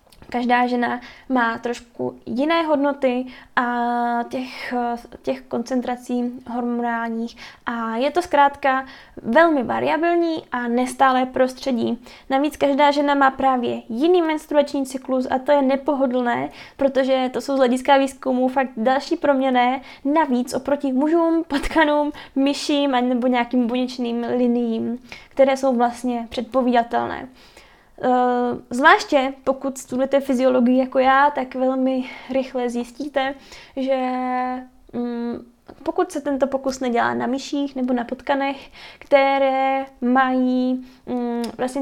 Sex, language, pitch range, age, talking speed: female, Czech, 245-275 Hz, 10-29, 110 wpm